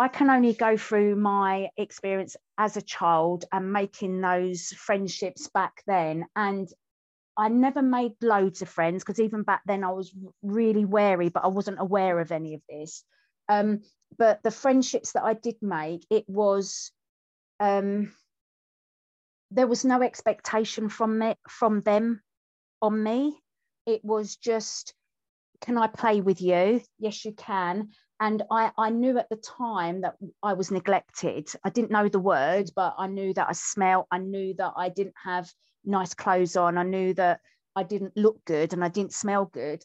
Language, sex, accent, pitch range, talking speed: English, female, British, 185-220 Hz, 170 wpm